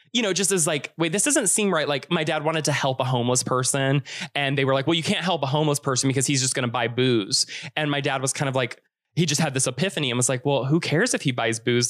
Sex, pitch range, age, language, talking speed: male, 125-150 Hz, 20-39, English, 300 wpm